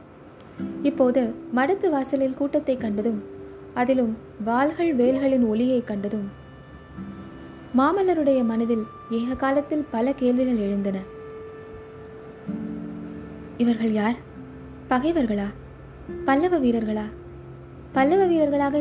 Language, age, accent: Tamil, 20-39, native